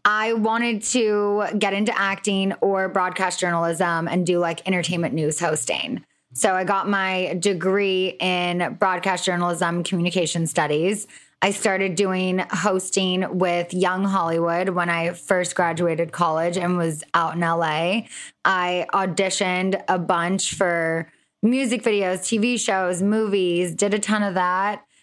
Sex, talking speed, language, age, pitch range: female, 135 wpm, English, 20-39, 175-205 Hz